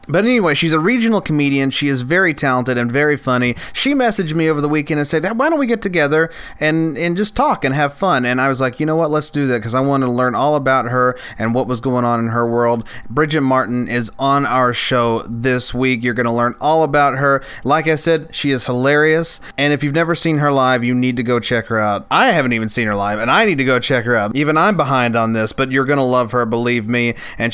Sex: male